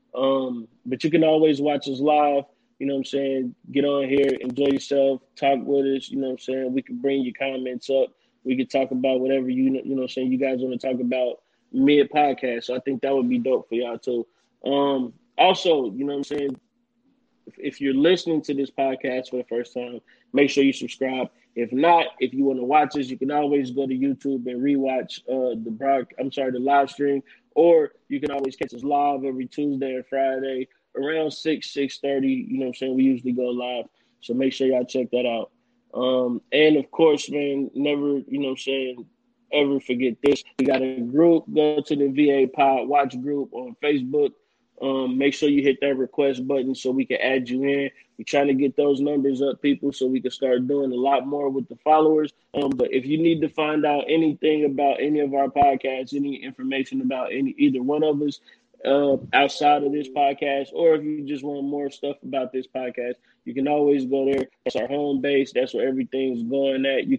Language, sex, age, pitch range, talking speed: English, male, 20-39, 130-145 Hz, 225 wpm